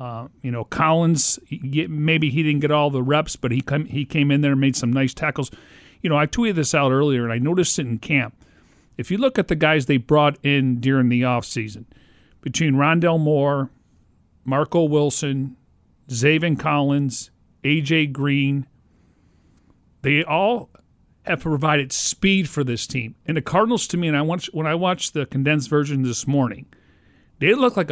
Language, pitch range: English, 125-155 Hz